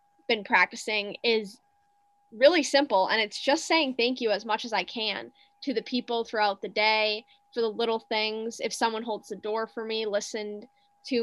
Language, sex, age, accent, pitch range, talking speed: English, female, 10-29, American, 215-270 Hz, 185 wpm